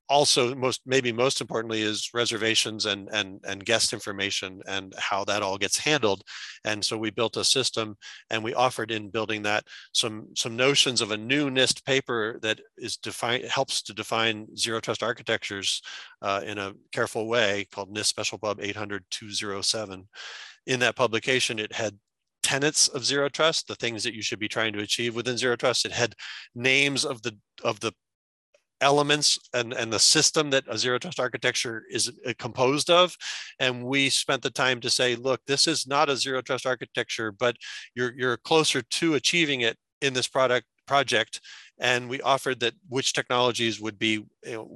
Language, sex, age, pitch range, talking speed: English, male, 40-59, 105-130 Hz, 180 wpm